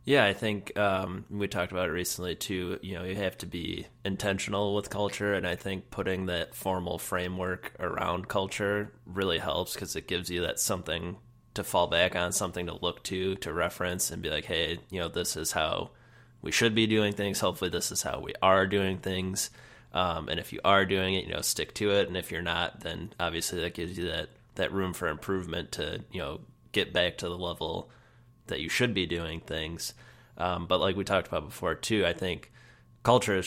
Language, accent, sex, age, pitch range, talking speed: English, American, male, 20-39, 90-100 Hz, 215 wpm